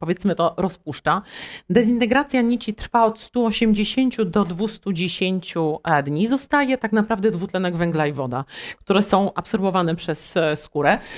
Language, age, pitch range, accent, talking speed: Polish, 30-49, 175-230 Hz, native, 125 wpm